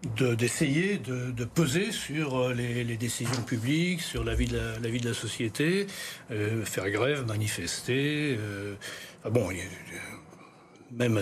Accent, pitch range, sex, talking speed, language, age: French, 120-155 Hz, male, 155 wpm, French, 60-79